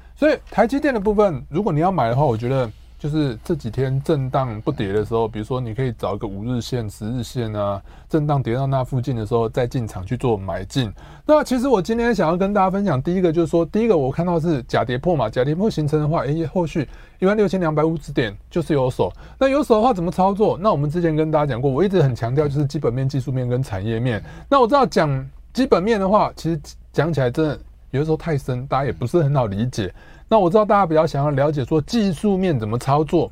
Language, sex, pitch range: Chinese, male, 130-195 Hz